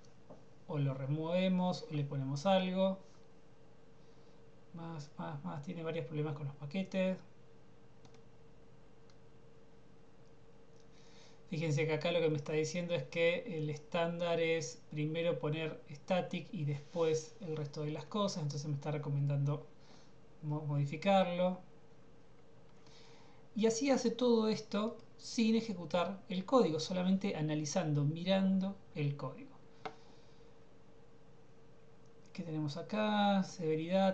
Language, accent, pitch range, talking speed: Spanish, Argentinian, 150-185 Hz, 110 wpm